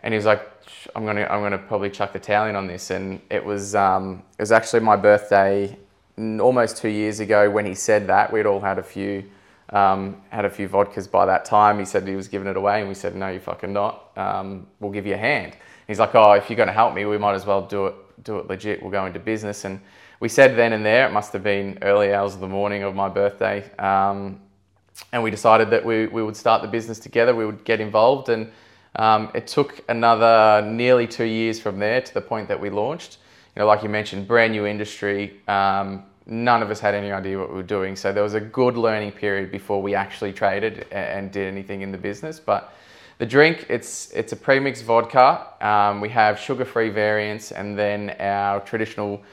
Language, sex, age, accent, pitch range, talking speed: English, male, 20-39, Australian, 100-110 Hz, 230 wpm